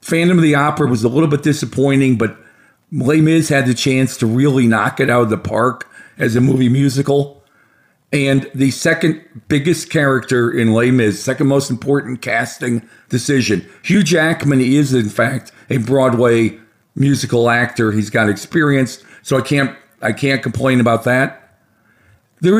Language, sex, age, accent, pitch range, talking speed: English, male, 50-69, American, 115-140 Hz, 160 wpm